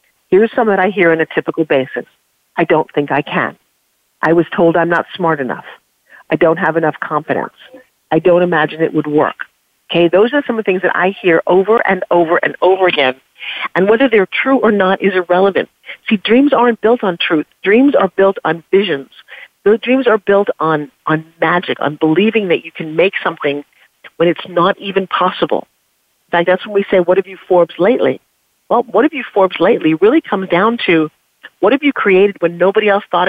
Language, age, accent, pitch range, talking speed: English, 50-69, American, 170-215 Hz, 205 wpm